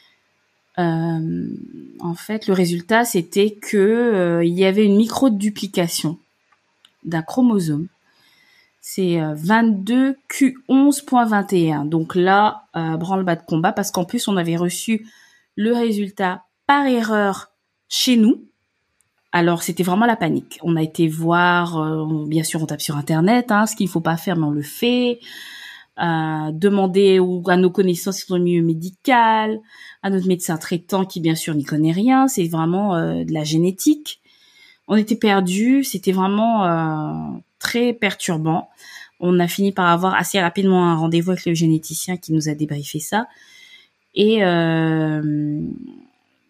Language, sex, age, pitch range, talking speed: French, female, 20-39, 170-230 Hz, 150 wpm